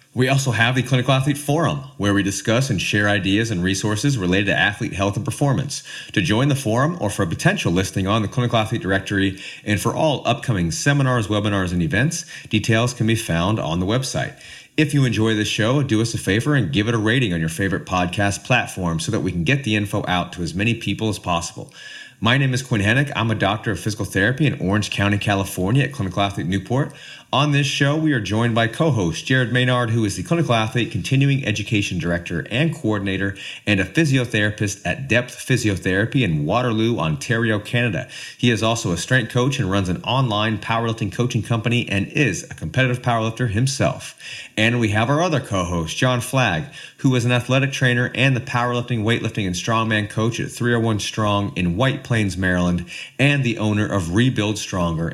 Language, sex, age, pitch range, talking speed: English, male, 30-49, 100-130 Hz, 200 wpm